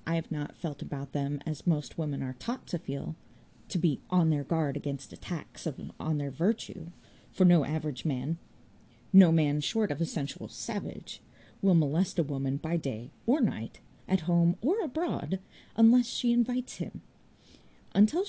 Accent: American